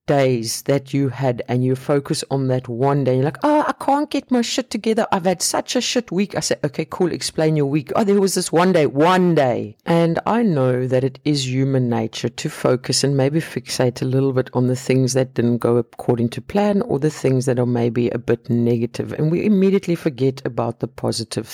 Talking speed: 230 wpm